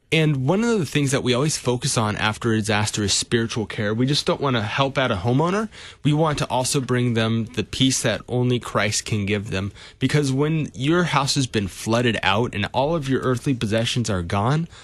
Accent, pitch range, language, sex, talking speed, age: American, 105-135 Hz, English, male, 220 wpm, 30-49